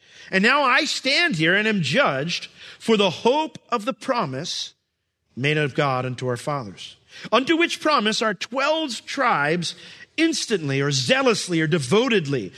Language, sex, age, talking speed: English, male, 50-69, 150 wpm